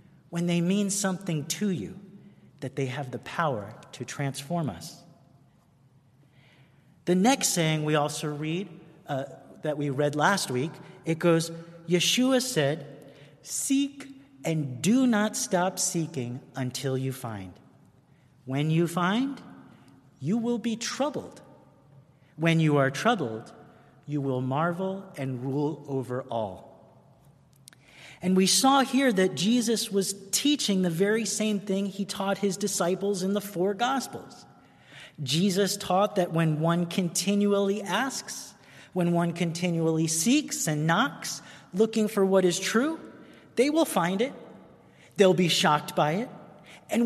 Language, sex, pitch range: English, male, 145-200 Hz